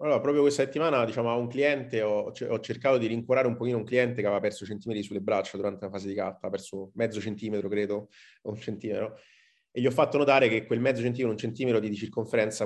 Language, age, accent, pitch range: Italian, 30-49, native, 105-125 Hz